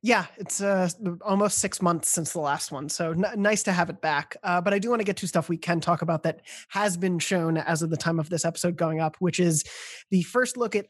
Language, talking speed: English, 265 wpm